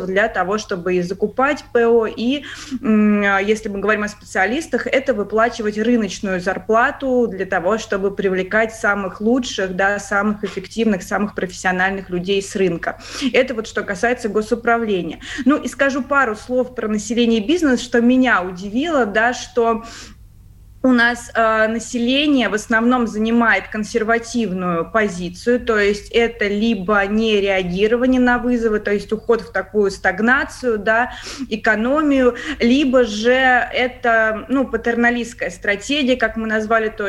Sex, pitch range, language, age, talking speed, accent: female, 200-240 Hz, Russian, 20-39, 135 wpm, native